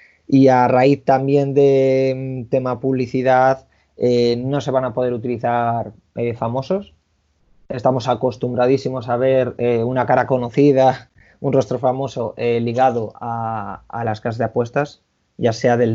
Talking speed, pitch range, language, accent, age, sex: 145 wpm, 115-130 Hz, Spanish, Spanish, 20-39, male